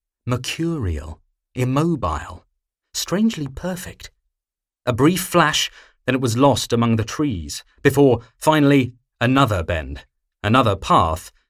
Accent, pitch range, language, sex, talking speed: British, 85-130 Hz, English, male, 105 wpm